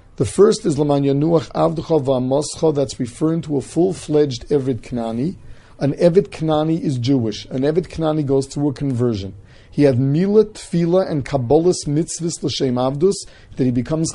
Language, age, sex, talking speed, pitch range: English, 40-59, male, 155 wpm, 125-160 Hz